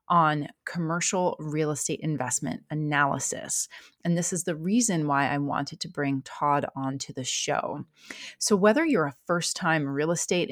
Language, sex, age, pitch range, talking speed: English, female, 30-49, 155-205 Hz, 155 wpm